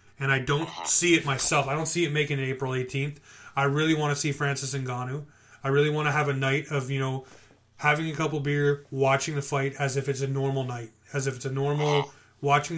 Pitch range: 130-145 Hz